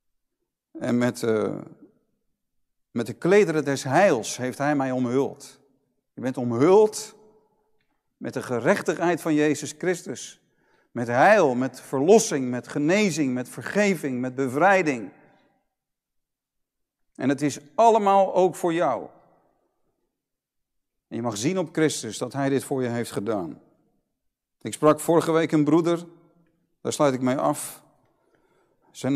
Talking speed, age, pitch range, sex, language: 130 wpm, 50-69, 120-150 Hz, male, Dutch